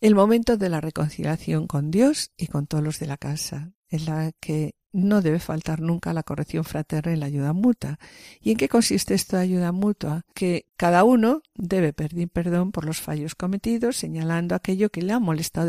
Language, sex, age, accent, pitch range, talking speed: Spanish, female, 50-69, Spanish, 155-190 Hz, 195 wpm